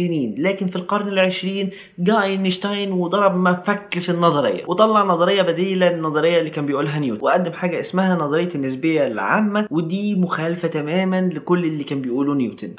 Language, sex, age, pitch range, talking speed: Arabic, male, 20-39, 155-195 Hz, 150 wpm